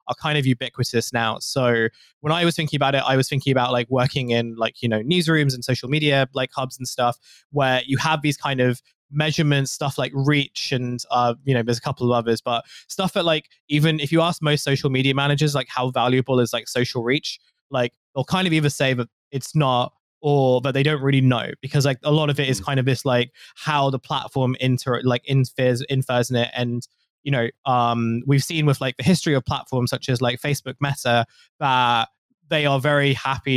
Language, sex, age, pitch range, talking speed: English, male, 20-39, 125-145 Hz, 225 wpm